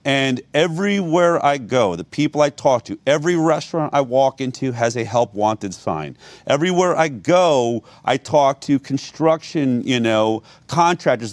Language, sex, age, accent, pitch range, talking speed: English, male, 40-59, American, 135-165 Hz, 155 wpm